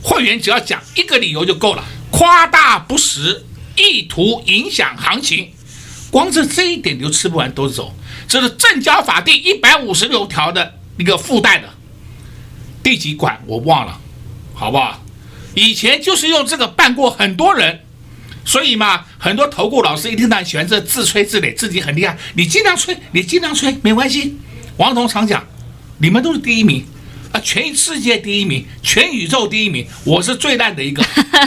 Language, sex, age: Chinese, male, 50-69